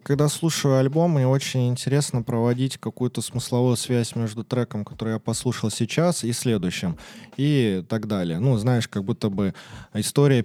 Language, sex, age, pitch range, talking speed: Russian, male, 20-39, 105-130 Hz, 155 wpm